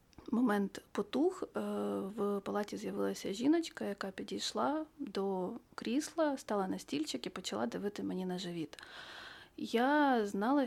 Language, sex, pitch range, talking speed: Ukrainian, female, 185-235 Hz, 120 wpm